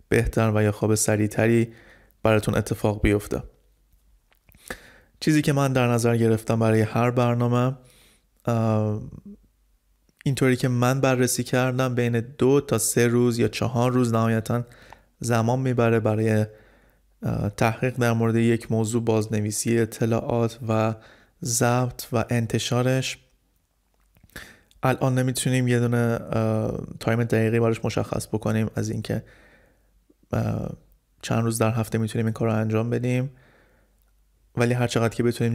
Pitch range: 110-125 Hz